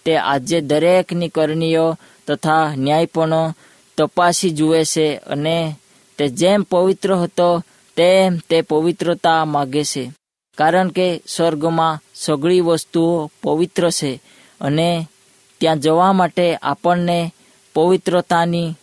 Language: Hindi